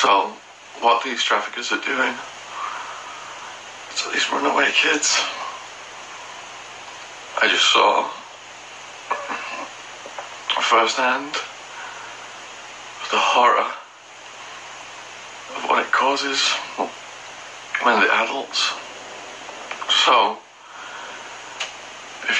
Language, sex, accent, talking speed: English, male, British, 70 wpm